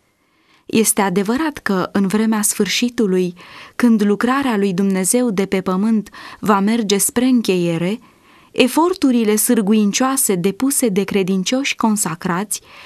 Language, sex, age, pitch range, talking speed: English, female, 20-39, 195-255 Hz, 105 wpm